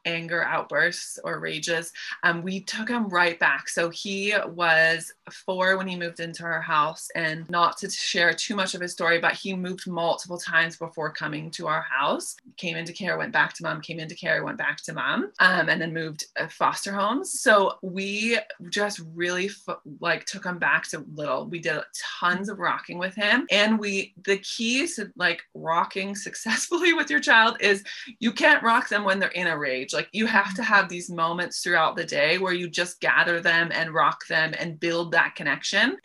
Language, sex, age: English, female, 20-39